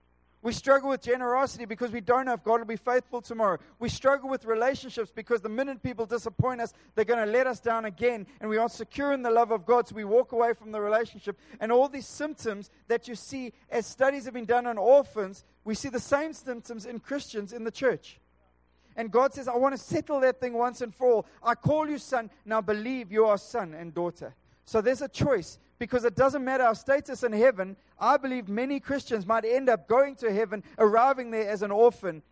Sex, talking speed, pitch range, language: male, 230 wpm, 175-245 Hz, English